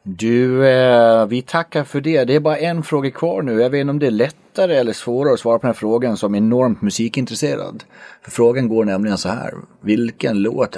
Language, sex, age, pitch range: English, male, 30-49, 110-150 Hz